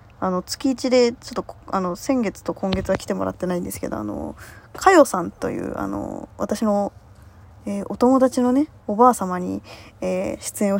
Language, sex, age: Japanese, female, 20-39